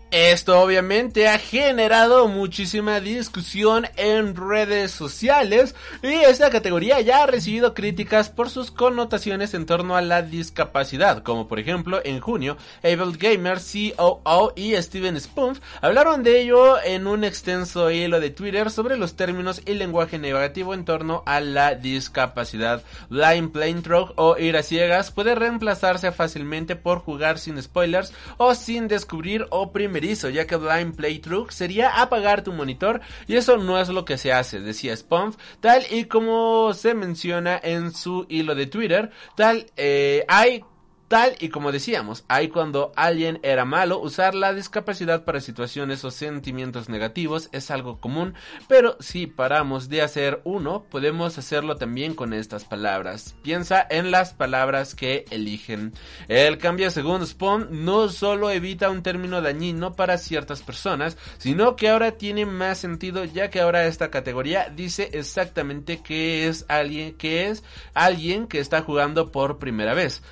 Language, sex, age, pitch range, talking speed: Spanish, male, 30-49, 150-205 Hz, 155 wpm